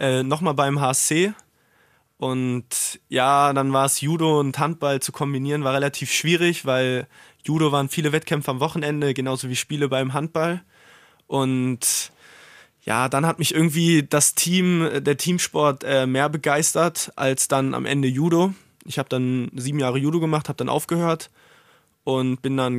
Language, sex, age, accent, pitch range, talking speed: German, male, 20-39, German, 130-150 Hz, 160 wpm